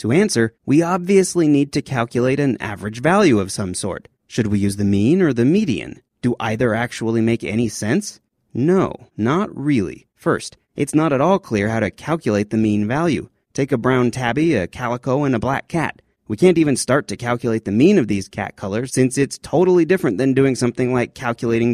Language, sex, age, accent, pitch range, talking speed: English, male, 30-49, American, 110-155 Hz, 200 wpm